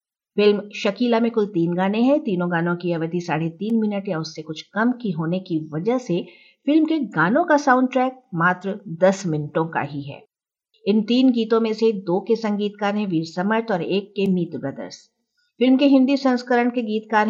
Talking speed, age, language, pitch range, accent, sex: 200 wpm, 50-69, Hindi, 180-245 Hz, native, female